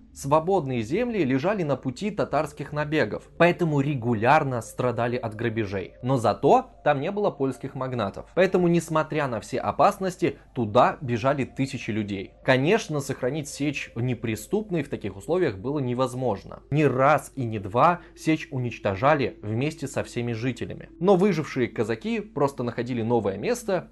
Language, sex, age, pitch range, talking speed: Russian, male, 20-39, 120-170 Hz, 140 wpm